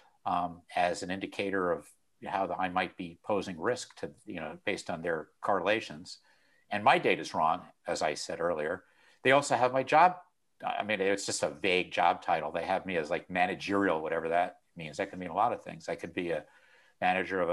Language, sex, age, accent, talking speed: English, male, 50-69, American, 215 wpm